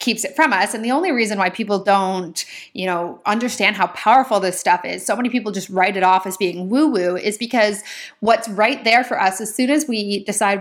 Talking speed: 240 wpm